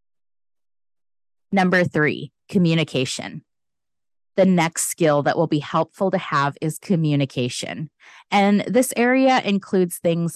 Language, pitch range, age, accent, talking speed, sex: English, 140-190 Hz, 30-49, American, 110 wpm, female